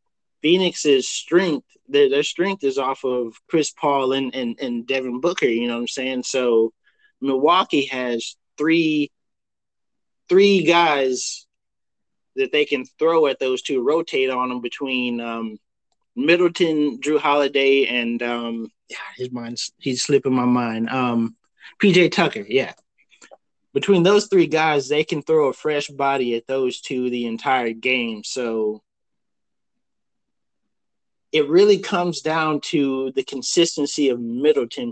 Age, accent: 20-39, American